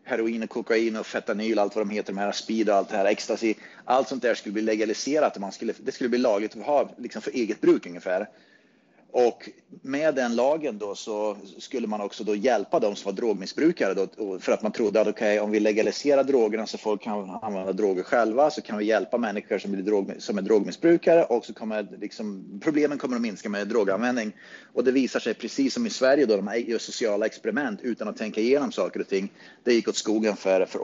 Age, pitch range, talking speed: 30-49, 105-150 Hz, 225 wpm